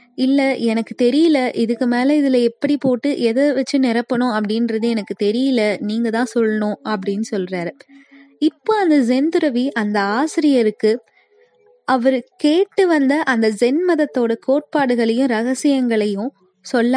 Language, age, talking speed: Tamil, 20-39, 110 wpm